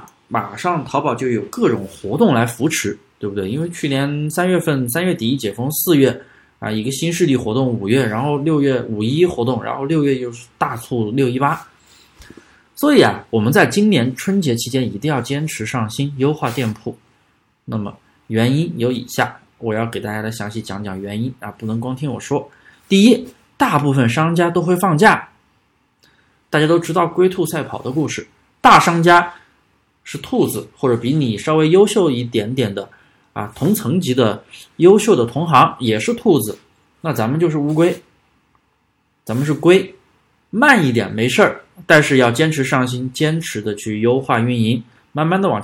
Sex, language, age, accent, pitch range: male, Chinese, 20-39, native, 115-160 Hz